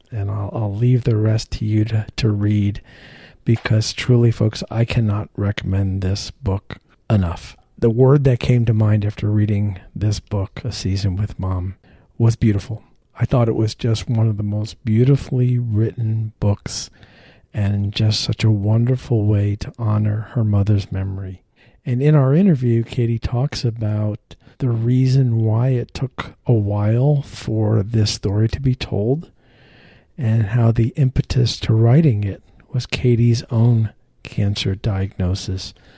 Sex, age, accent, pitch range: male, 50-69, American, 100-120 Hz